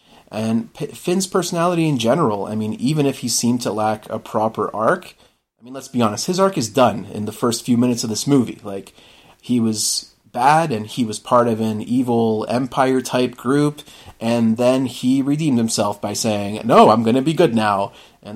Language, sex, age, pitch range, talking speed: English, male, 30-49, 110-130 Hz, 195 wpm